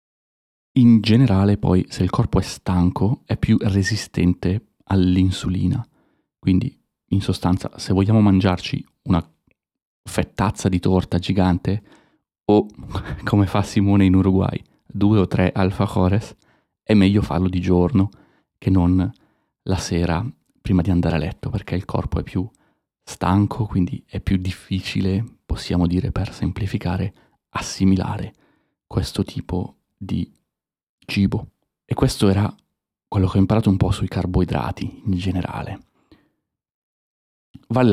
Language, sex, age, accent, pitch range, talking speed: Italian, male, 30-49, native, 90-105 Hz, 125 wpm